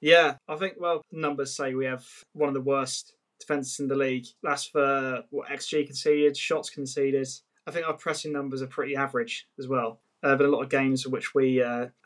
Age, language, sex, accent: 20-39, English, male, British